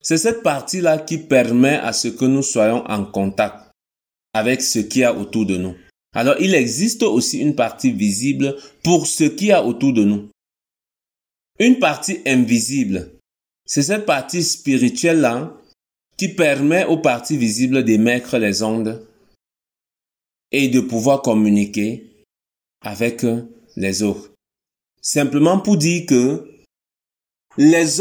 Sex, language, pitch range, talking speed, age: male, French, 110-155 Hz, 135 wpm, 30-49